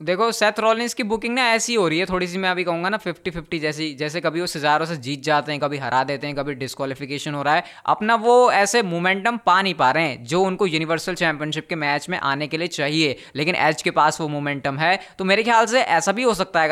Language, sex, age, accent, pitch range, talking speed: Hindi, female, 20-39, native, 155-200 Hz, 260 wpm